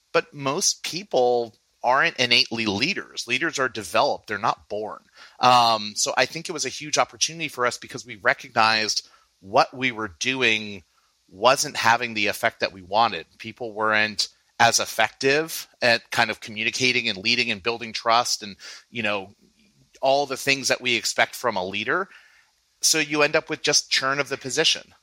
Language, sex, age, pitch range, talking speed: English, male, 30-49, 110-135 Hz, 175 wpm